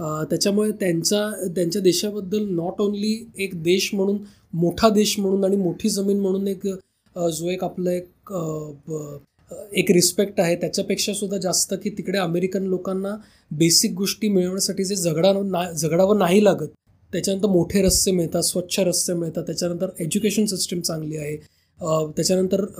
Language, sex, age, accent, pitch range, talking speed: Marathi, male, 20-39, native, 175-200 Hz, 135 wpm